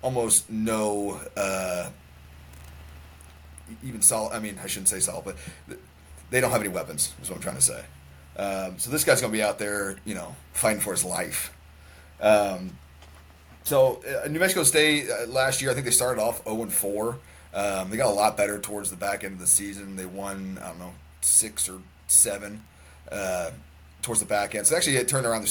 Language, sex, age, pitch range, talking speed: English, male, 30-49, 90-110 Hz, 200 wpm